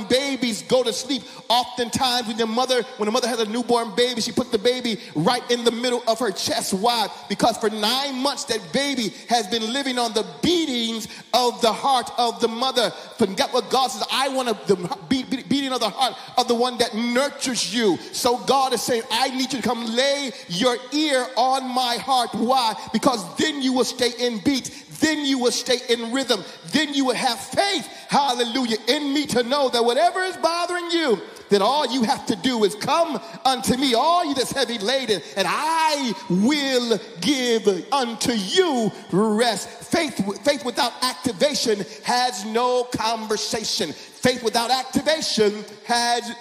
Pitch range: 225-265 Hz